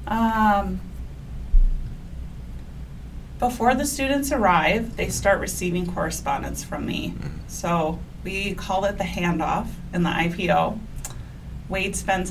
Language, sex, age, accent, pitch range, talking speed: English, female, 30-49, American, 160-185 Hz, 105 wpm